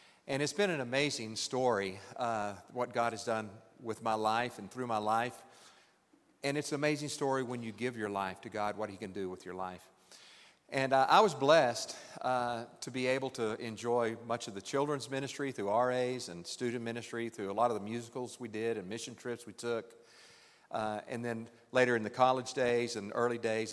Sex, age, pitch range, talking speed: male, 50-69, 110-130 Hz, 205 wpm